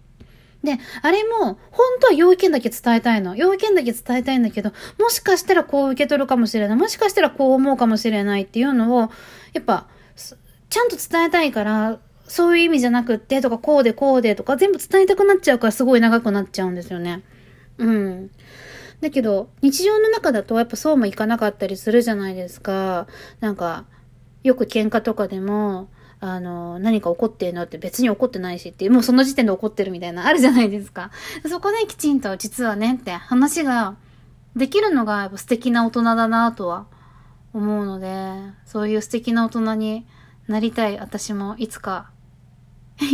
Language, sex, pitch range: Japanese, female, 195-250 Hz